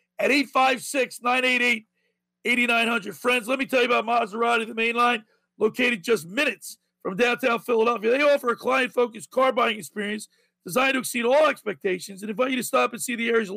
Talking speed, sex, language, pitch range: 165 wpm, male, English, 225-270 Hz